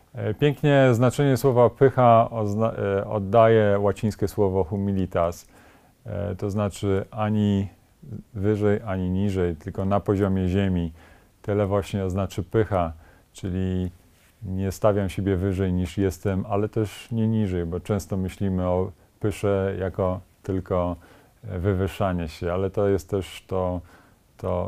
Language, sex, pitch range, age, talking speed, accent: Polish, male, 90-110 Hz, 40-59, 115 wpm, native